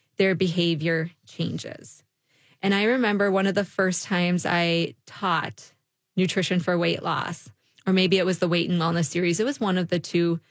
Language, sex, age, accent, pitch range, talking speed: English, female, 20-39, American, 170-200 Hz, 185 wpm